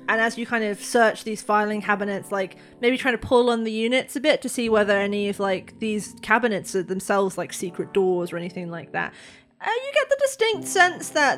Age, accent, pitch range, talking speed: 20-39, British, 190-240 Hz, 225 wpm